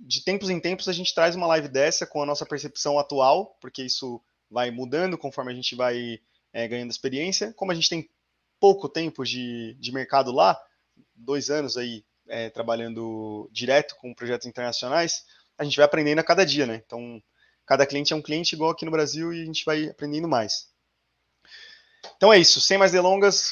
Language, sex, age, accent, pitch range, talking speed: Portuguese, male, 20-39, Brazilian, 130-175 Hz, 190 wpm